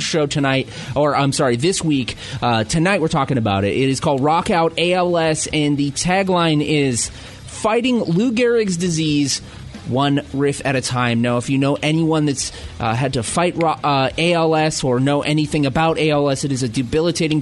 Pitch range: 130-165 Hz